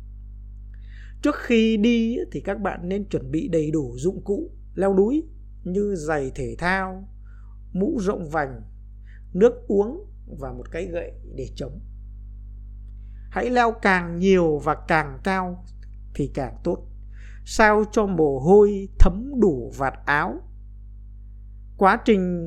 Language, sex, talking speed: Vietnamese, male, 135 wpm